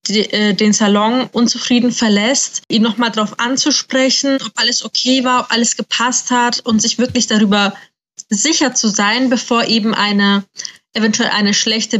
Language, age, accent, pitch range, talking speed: German, 20-39, German, 205-250 Hz, 145 wpm